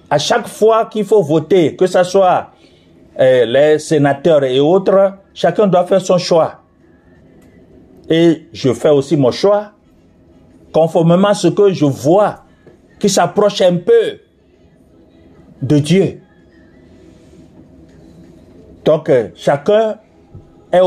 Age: 50-69